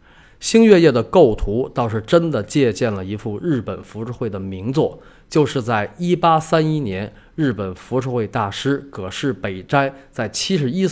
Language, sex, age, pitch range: Chinese, male, 20-39, 105-140 Hz